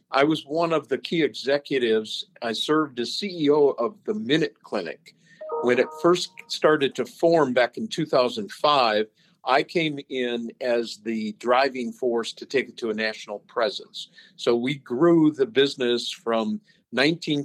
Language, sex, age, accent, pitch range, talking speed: English, male, 50-69, American, 120-155 Hz, 155 wpm